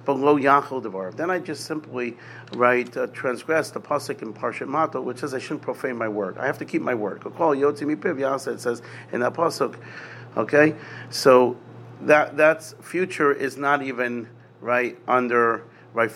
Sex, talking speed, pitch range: male, 150 wpm, 115-140 Hz